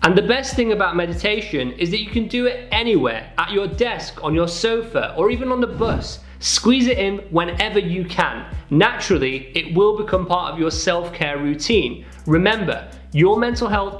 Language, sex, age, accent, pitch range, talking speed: Swedish, male, 30-49, British, 160-215 Hz, 185 wpm